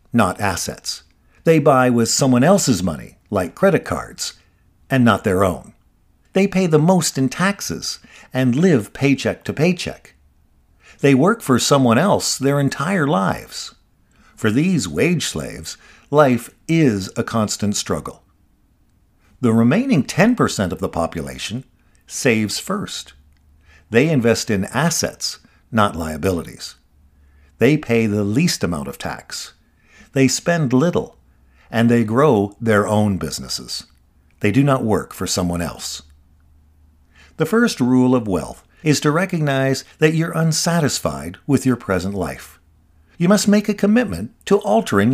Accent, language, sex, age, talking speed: American, English, male, 50-69, 135 wpm